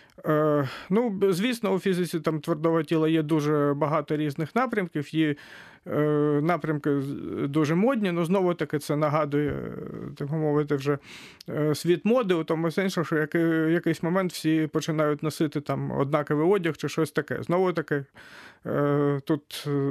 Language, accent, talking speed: Ukrainian, native, 125 wpm